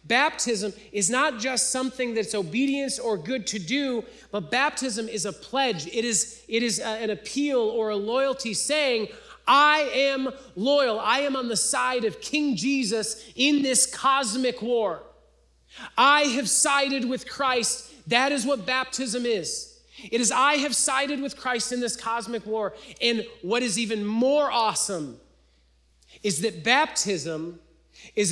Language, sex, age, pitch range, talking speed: English, male, 30-49, 230-300 Hz, 155 wpm